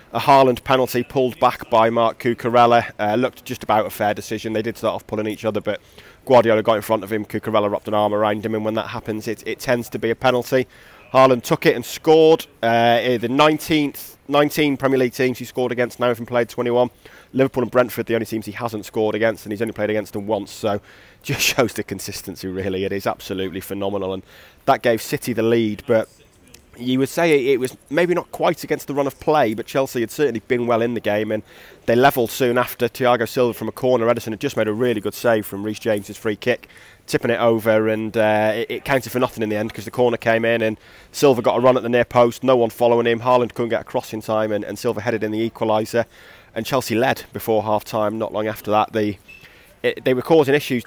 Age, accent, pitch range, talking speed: 30-49, British, 110-125 Hz, 240 wpm